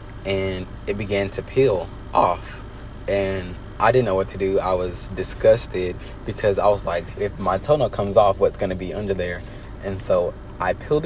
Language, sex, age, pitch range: English, male, 20-39, 95-115 Hz